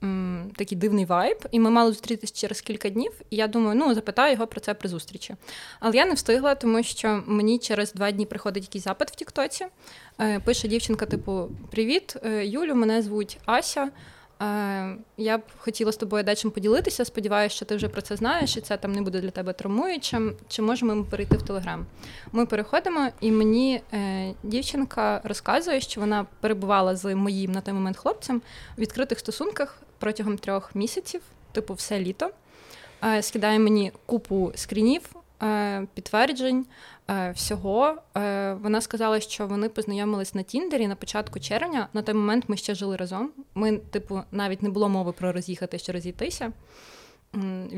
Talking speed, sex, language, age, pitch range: 165 wpm, female, Ukrainian, 20-39, 200-230 Hz